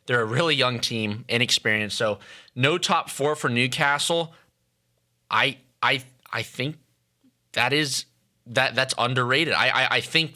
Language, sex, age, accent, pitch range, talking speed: English, male, 20-39, American, 105-130 Hz, 145 wpm